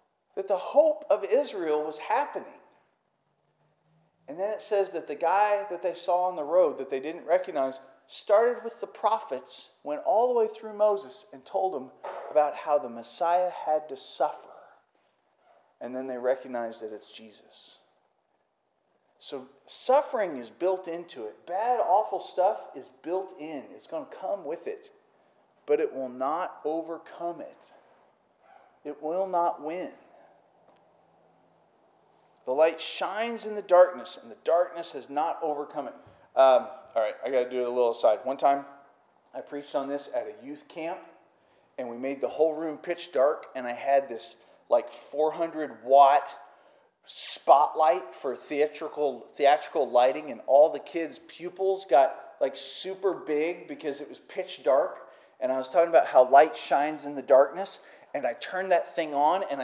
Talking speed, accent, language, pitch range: 165 wpm, American, English, 140-190 Hz